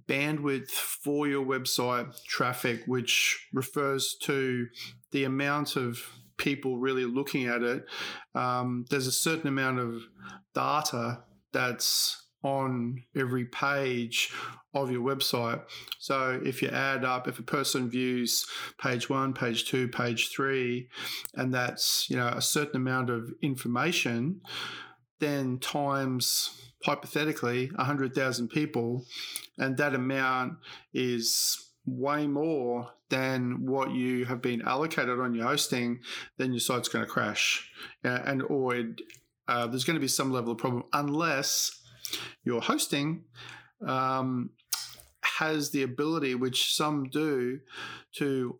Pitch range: 125-140 Hz